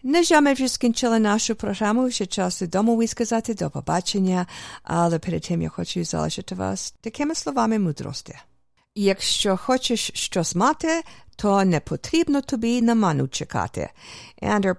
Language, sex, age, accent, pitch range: English, female, 50-69, American, 170-245 Hz